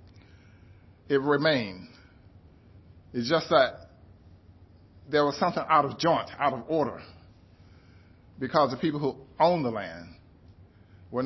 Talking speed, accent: 115 wpm, American